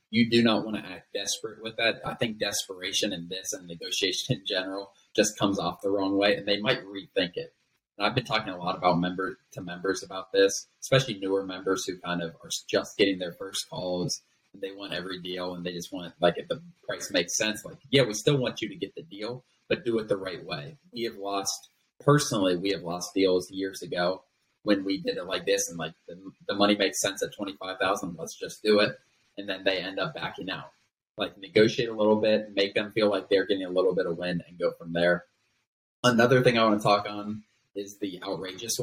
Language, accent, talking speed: English, American, 235 wpm